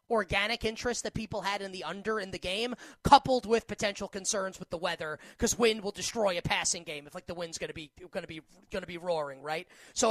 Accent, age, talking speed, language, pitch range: American, 30-49, 245 wpm, English, 185-235 Hz